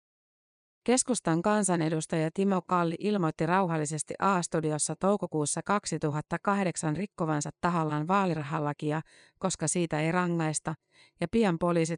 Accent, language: native, Finnish